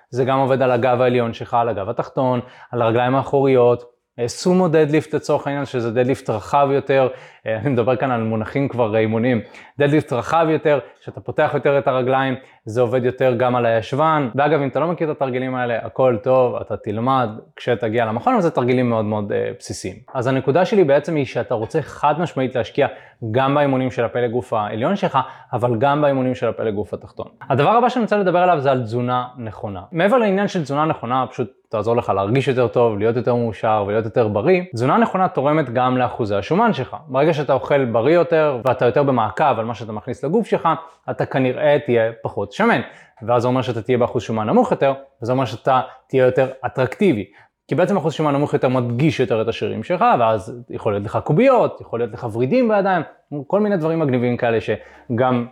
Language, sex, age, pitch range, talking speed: Hebrew, male, 20-39, 120-150 Hz, 190 wpm